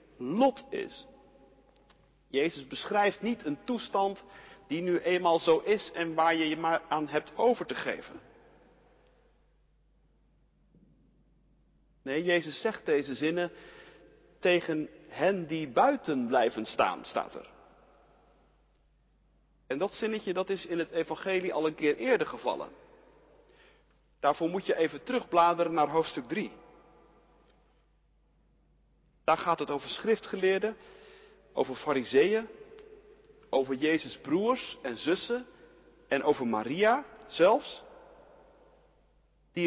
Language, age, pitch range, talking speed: Dutch, 50-69, 165-275 Hz, 110 wpm